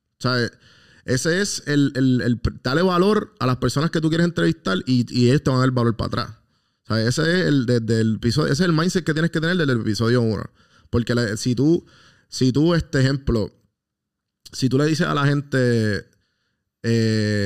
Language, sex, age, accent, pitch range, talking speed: Spanish, male, 20-39, Venezuelan, 110-140 Hz, 215 wpm